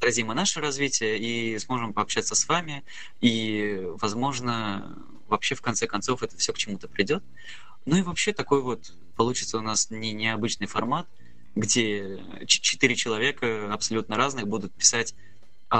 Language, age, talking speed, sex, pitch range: Russian, 20-39, 140 wpm, male, 105-130 Hz